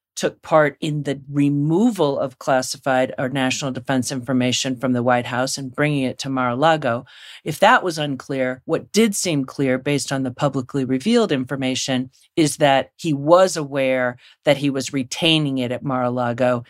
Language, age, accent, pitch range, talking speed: English, 40-59, American, 130-150 Hz, 165 wpm